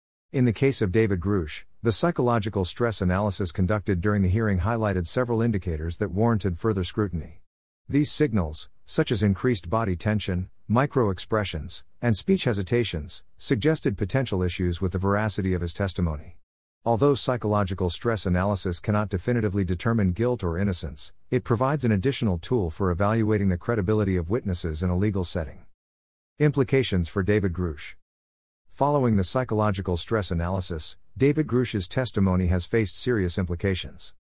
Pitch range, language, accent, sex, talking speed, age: 90-115 Hz, English, American, male, 145 wpm, 50-69